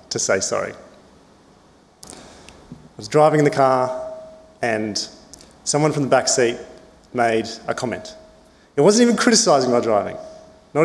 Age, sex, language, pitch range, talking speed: 30-49, male, English, 115-170 Hz, 140 wpm